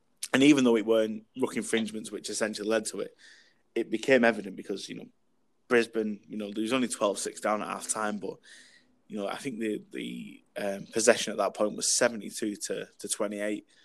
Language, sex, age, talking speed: English, male, 20-39, 195 wpm